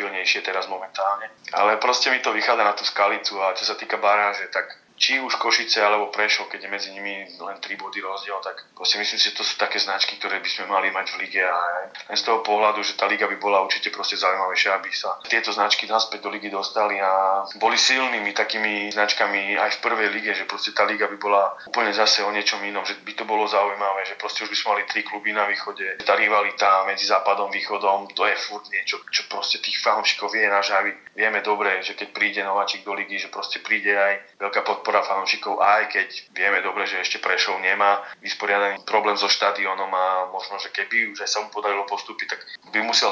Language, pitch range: Slovak, 95-105 Hz